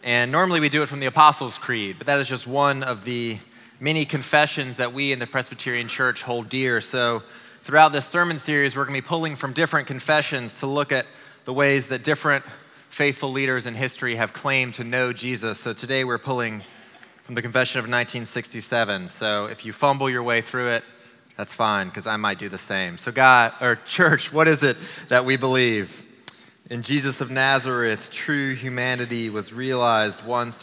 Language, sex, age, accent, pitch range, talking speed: English, male, 20-39, American, 110-135 Hz, 195 wpm